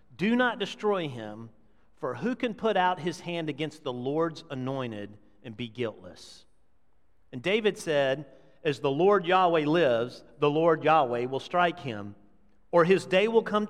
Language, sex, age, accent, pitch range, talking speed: English, male, 40-59, American, 135-220 Hz, 160 wpm